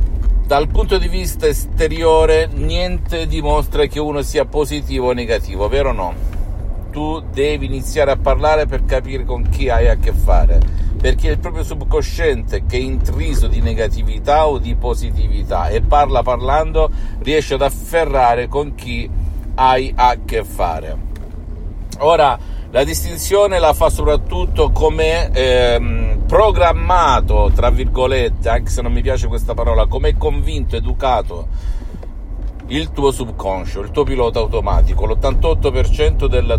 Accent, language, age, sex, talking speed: native, Italian, 50-69, male, 140 wpm